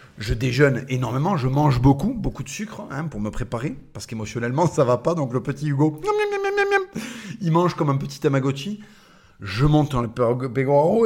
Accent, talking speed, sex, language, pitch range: French, 230 wpm, male, French, 120-175 Hz